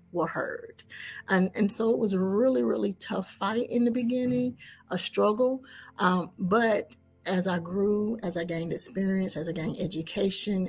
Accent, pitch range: American, 175-200 Hz